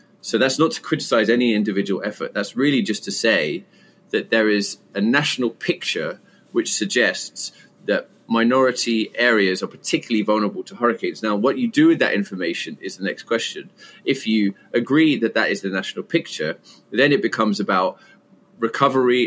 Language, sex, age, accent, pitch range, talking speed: English, male, 30-49, British, 105-135 Hz, 170 wpm